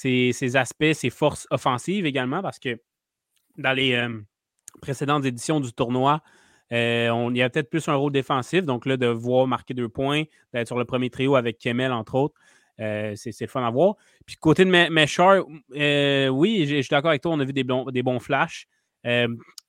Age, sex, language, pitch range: 20-39, male, French, 120-150 Hz